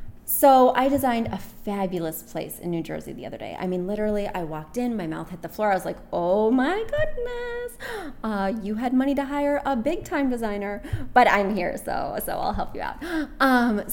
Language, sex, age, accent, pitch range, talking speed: English, female, 20-39, American, 185-255 Hz, 210 wpm